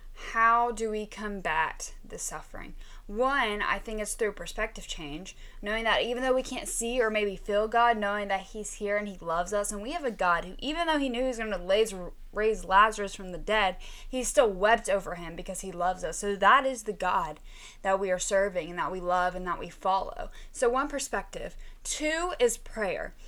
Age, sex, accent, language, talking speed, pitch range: 10-29, female, American, English, 215 wpm, 200-250 Hz